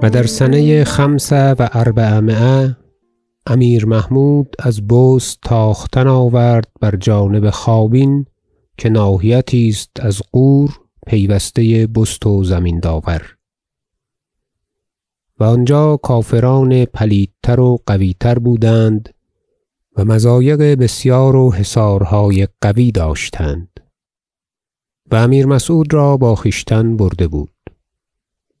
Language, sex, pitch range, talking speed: Persian, male, 100-130 Hz, 95 wpm